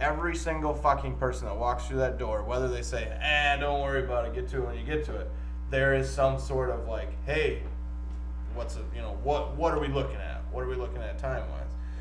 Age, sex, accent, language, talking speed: 20-39, male, American, English, 240 wpm